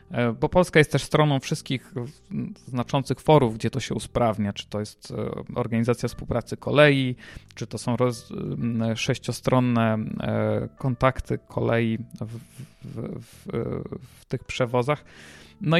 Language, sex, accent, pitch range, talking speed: Polish, male, native, 115-145 Hz, 120 wpm